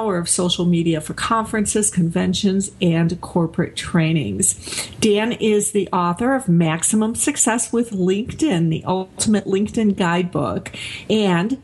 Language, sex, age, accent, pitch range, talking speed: English, female, 50-69, American, 180-230 Hz, 120 wpm